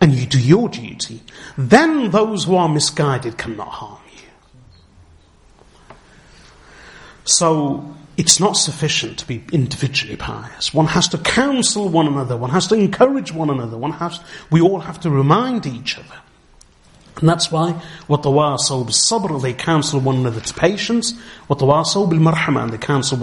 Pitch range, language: 130-175 Hz, English